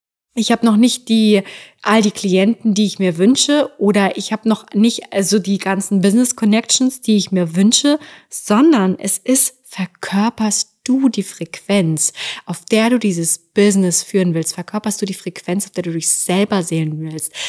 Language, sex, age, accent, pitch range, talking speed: German, female, 20-39, German, 180-225 Hz, 175 wpm